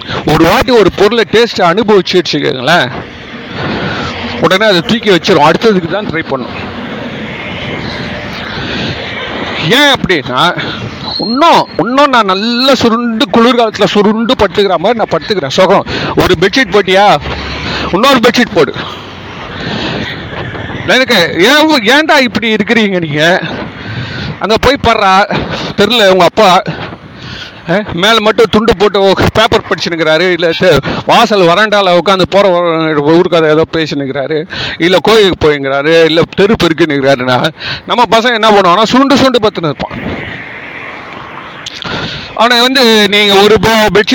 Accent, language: native, Tamil